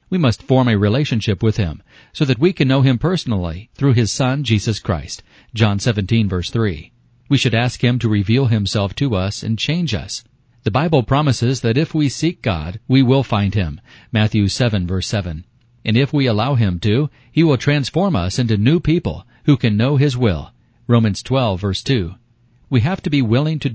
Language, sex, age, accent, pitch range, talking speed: English, male, 40-59, American, 105-135 Hz, 200 wpm